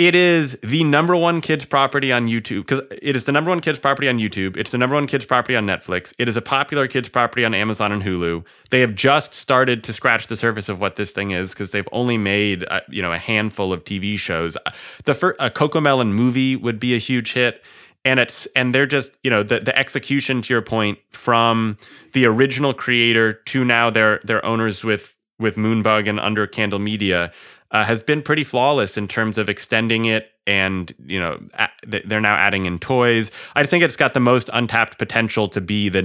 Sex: male